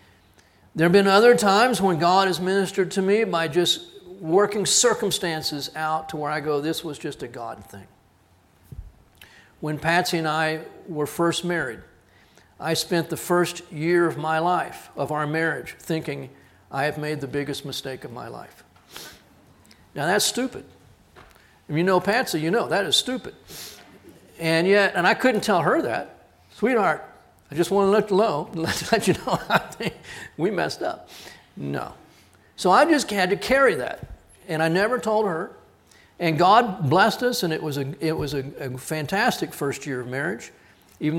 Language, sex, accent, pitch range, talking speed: English, male, American, 140-185 Hz, 170 wpm